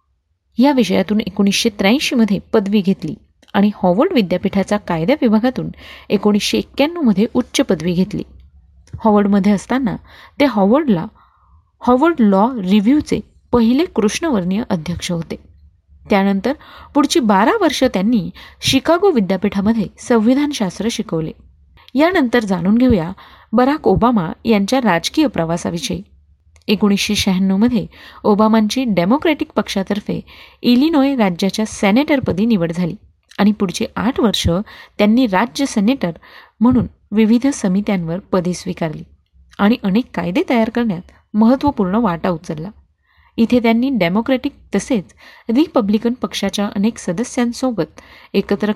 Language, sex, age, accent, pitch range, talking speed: Marathi, female, 30-49, native, 185-245 Hz, 100 wpm